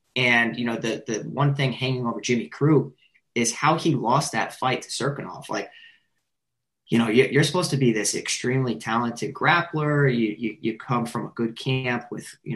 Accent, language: American, English